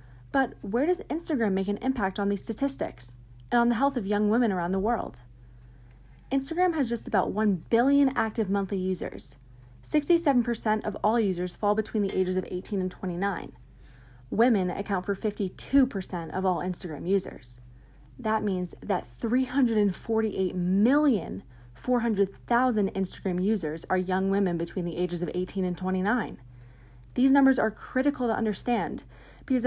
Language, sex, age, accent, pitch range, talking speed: English, female, 20-39, American, 180-230 Hz, 145 wpm